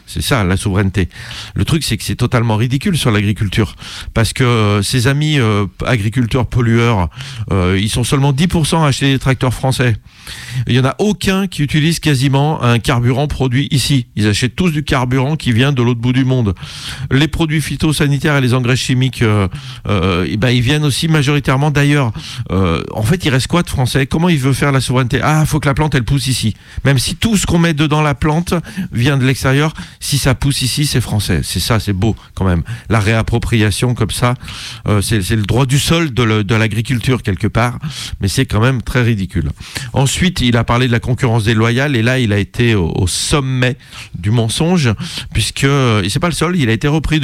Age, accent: 40-59, French